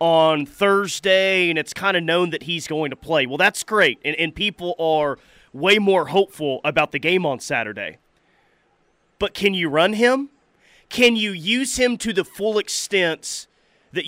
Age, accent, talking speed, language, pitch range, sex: 30-49, American, 175 wpm, English, 155-195 Hz, male